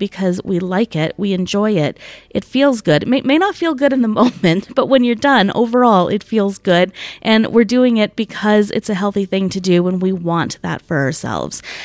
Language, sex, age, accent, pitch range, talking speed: English, female, 30-49, American, 185-220 Hz, 225 wpm